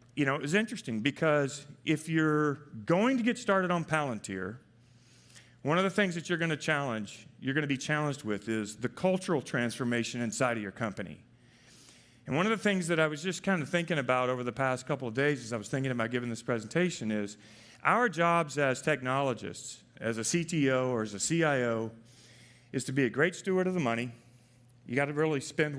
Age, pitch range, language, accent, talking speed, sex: 40-59, 115-155 Hz, English, American, 210 wpm, male